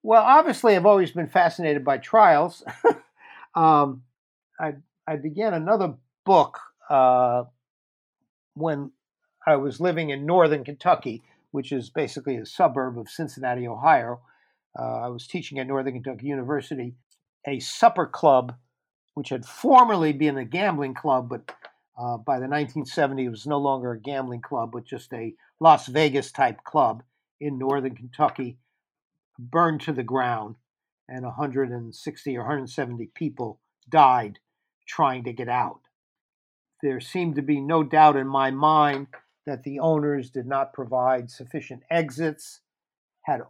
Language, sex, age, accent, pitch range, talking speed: English, male, 50-69, American, 130-155 Hz, 140 wpm